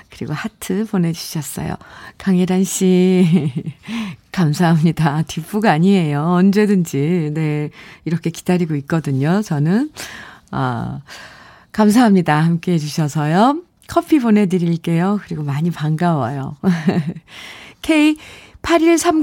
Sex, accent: female, native